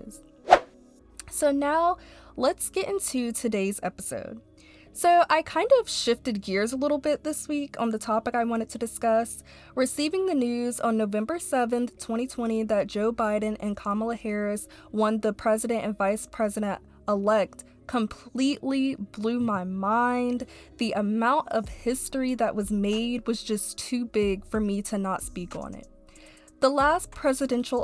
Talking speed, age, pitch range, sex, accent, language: 150 wpm, 20-39, 205-245 Hz, female, American, English